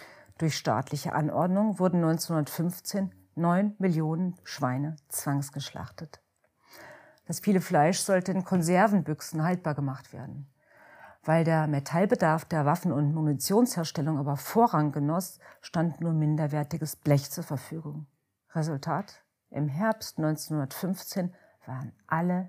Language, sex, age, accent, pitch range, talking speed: German, female, 40-59, German, 145-180 Hz, 105 wpm